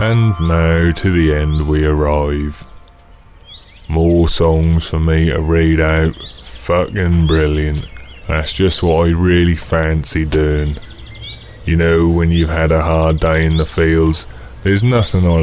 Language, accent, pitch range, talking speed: English, British, 75-90 Hz, 145 wpm